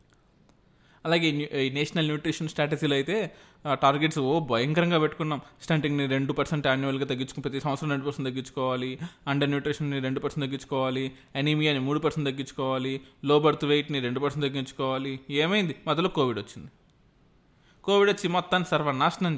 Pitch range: 130-155 Hz